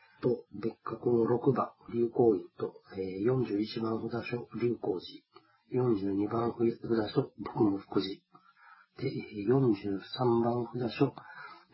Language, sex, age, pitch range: Japanese, male, 40-59, 110-130 Hz